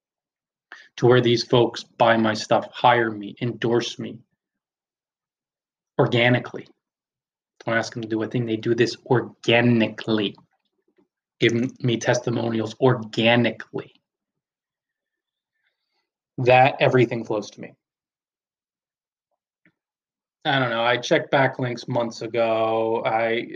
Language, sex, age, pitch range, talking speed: English, male, 20-39, 115-130 Hz, 105 wpm